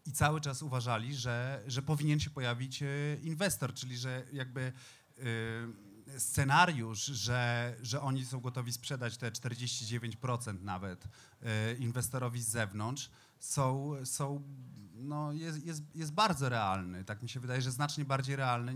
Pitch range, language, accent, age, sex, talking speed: 115-140 Hz, Polish, native, 30-49, male, 140 wpm